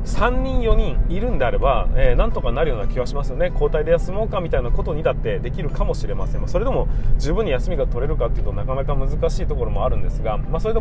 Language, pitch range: Japanese, 120-160 Hz